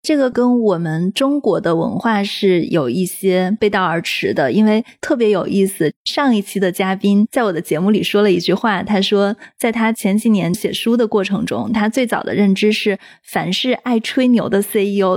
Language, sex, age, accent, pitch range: Chinese, female, 20-39, native, 190-230 Hz